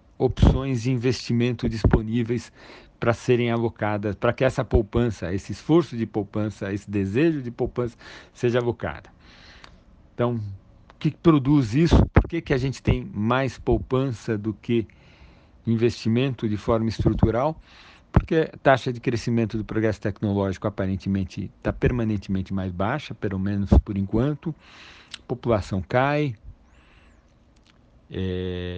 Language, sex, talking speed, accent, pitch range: Portuguese, male, 125 wpm, Brazilian, 100-135 Hz